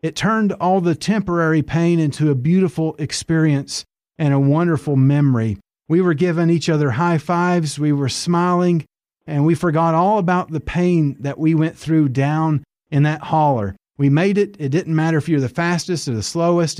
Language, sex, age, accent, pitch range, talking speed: English, male, 30-49, American, 140-170 Hz, 185 wpm